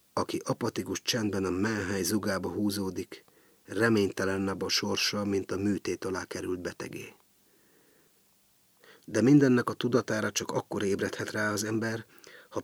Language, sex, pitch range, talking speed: Hungarian, male, 95-115 Hz, 130 wpm